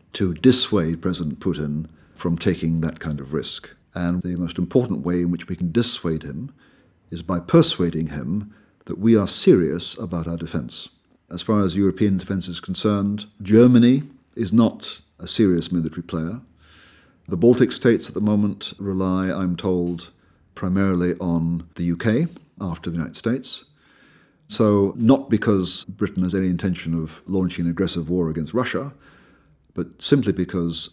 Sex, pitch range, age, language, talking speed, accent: male, 85-100 Hz, 40-59, English, 155 wpm, British